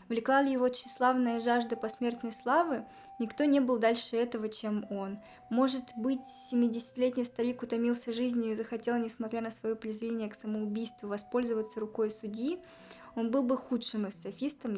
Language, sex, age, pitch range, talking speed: Russian, female, 20-39, 220-255 Hz, 145 wpm